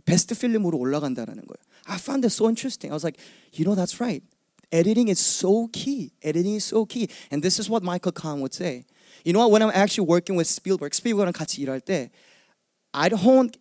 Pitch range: 145-215 Hz